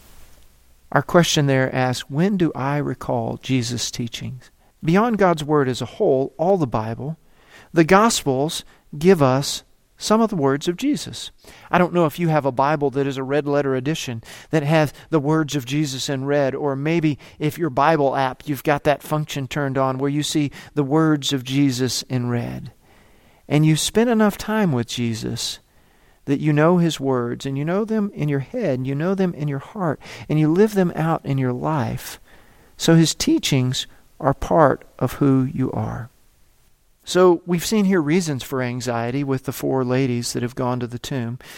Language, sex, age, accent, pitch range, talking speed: English, male, 40-59, American, 130-165 Hz, 190 wpm